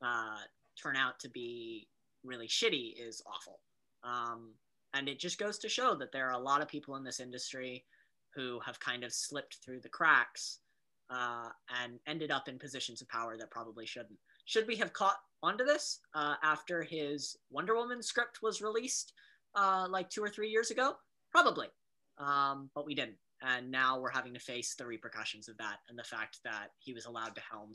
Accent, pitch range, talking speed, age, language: American, 115-145 Hz, 195 wpm, 10-29, English